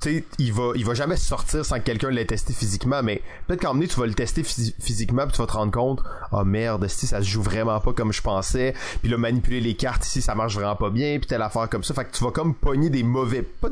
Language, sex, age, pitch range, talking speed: French, male, 30-49, 110-130 Hz, 295 wpm